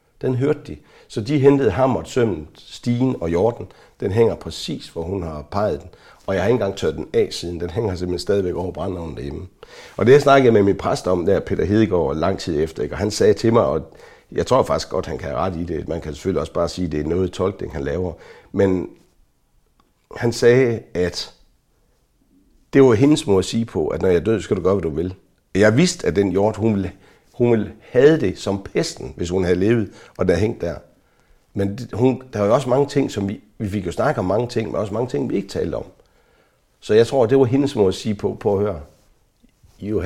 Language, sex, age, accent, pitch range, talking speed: Danish, male, 60-79, native, 95-130 Hz, 245 wpm